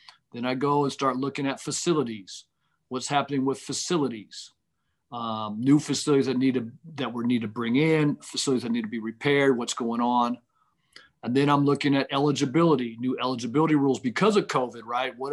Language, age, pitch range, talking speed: English, 50-69, 125-145 Hz, 175 wpm